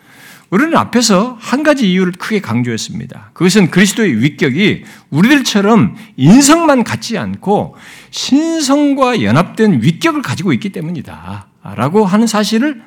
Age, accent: 60-79, native